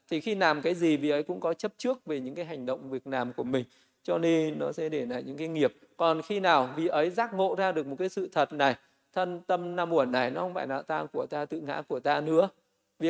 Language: Vietnamese